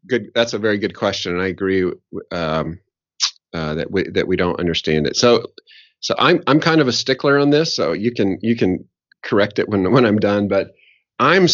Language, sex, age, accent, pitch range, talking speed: English, male, 40-59, American, 95-130 Hz, 215 wpm